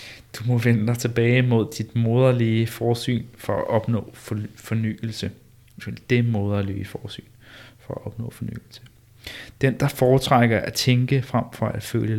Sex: male